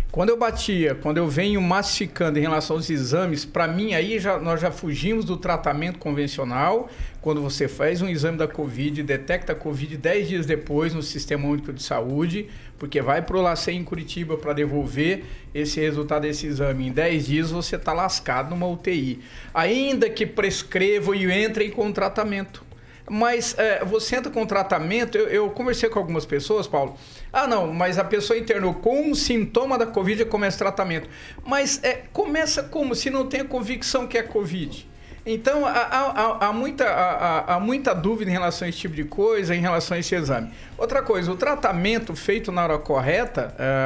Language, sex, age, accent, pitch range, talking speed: Portuguese, male, 50-69, Brazilian, 155-230 Hz, 180 wpm